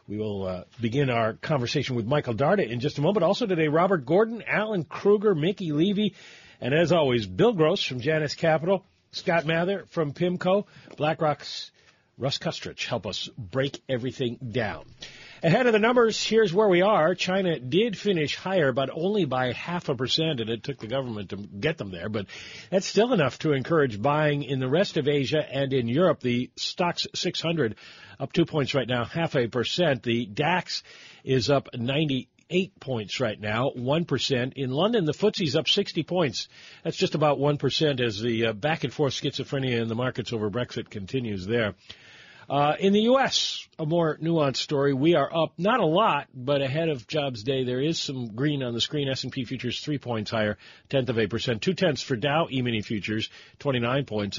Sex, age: male, 50-69